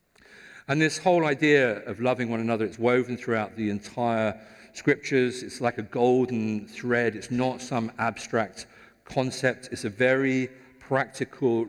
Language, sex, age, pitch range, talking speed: English, male, 50-69, 95-125 Hz, 145 wpm